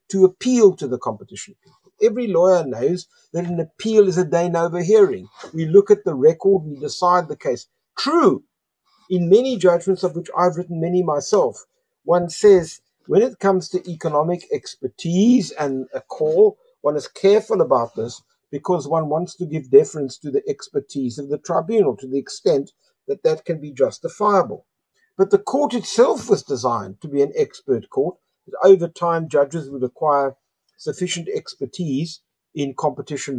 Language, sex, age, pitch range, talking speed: English, male, 50-69, 150-235 Hz, 165 wpm